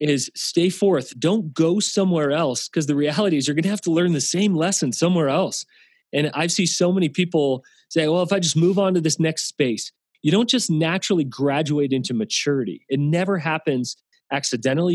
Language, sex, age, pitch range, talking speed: English, male, 30-49, 140-175 Hz, 210 wpm